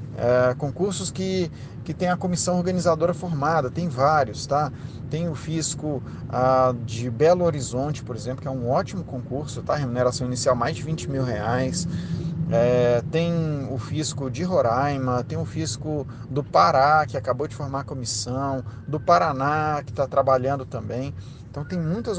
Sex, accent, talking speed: male, Brazilian, 155 wpm